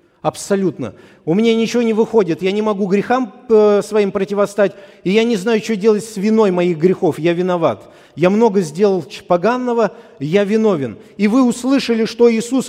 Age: 50-69